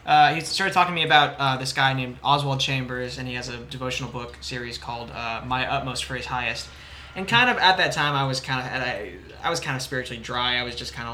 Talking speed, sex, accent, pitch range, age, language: 265 wpm, male, American, 125-150 Hz, 20-39, English